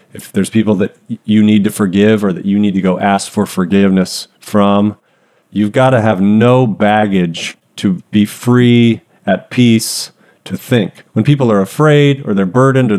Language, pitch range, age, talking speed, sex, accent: English, 100-125 Hz, 40-59, 180 wpm, male, American